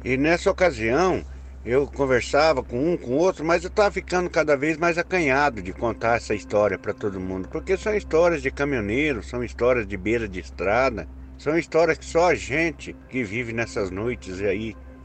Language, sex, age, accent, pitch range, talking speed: Portuguese, male, 60-79, Brazilian, 90-140 Hz, 185 wpm